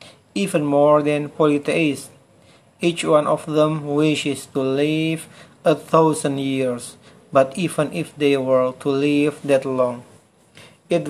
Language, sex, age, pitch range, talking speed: Indonesian, male, 40-59, 140-170 Hz, 130 wpm